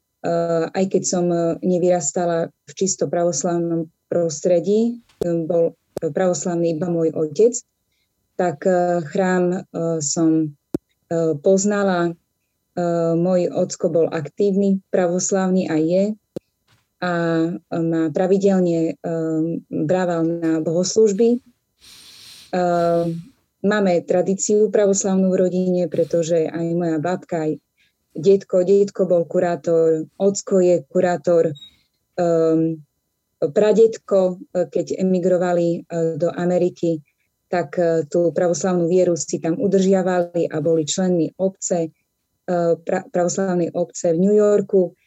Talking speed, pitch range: 90 wpm, 165-185 Hz